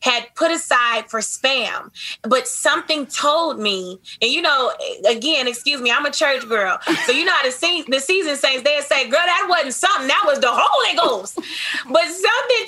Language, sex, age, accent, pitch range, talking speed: English, female, 20-39, American, 245-310 Hz, 195 wpm